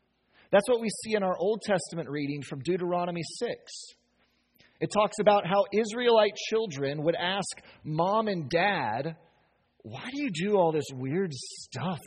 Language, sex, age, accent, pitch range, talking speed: English, male, 30-49, American, 140-205 Hz, 155 wpm